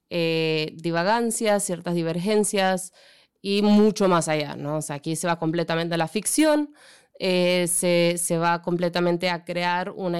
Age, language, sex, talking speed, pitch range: 20-39, Spanish, female, 135 wpm, 165-195 Hz